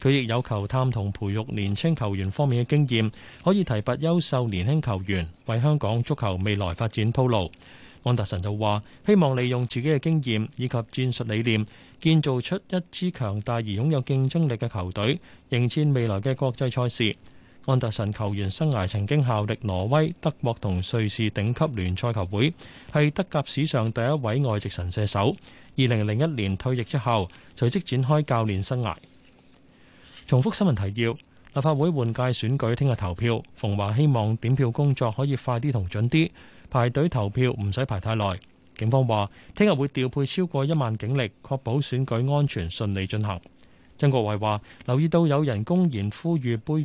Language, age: Chinese, 20-39